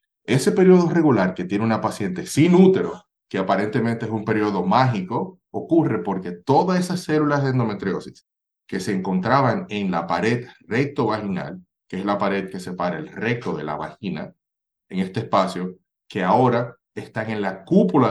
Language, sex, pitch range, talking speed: Spanish, male, 95-130 Hz, 160 wpm